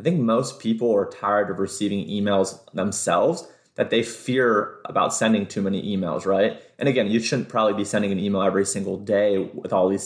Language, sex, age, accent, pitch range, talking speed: English, male, 30-49, American, 95-110 Hz, 205 wpm